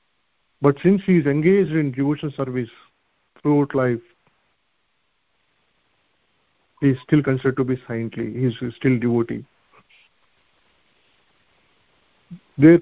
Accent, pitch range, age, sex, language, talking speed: Indian, 130-155 Hz, 40-59, male, English, 110 wpm